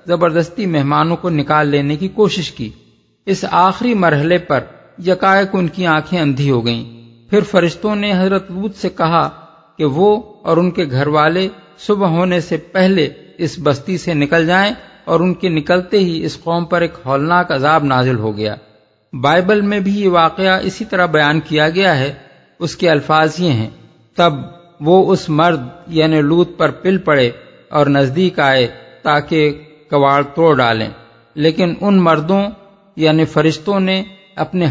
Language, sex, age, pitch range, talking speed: Urdu, male, 50-69, 135-175 Hz, 145 wpm